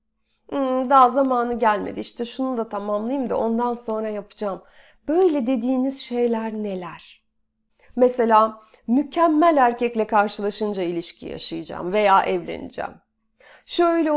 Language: Turkish